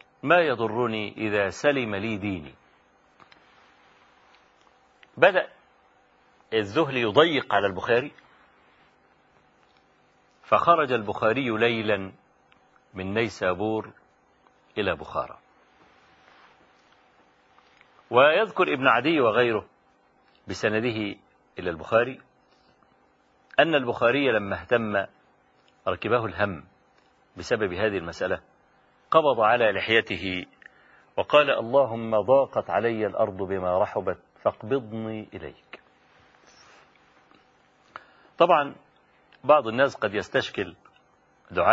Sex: male